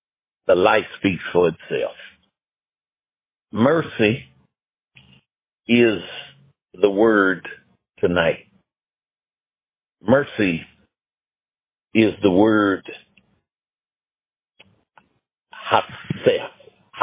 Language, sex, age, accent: English, male, 60-79, American